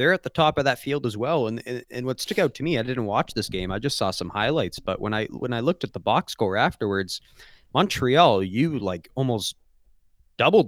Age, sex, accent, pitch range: 20-39, male, American, 105-125 Hz